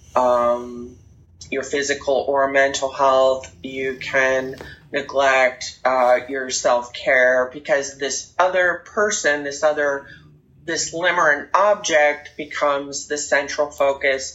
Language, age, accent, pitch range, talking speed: English, 30-49, American, 135-155 Hz, 105 wpm